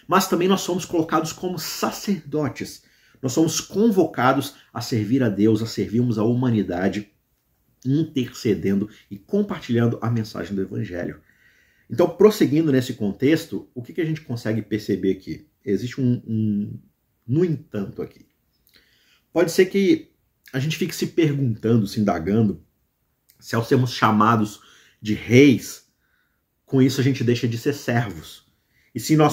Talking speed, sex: 145 wpm, male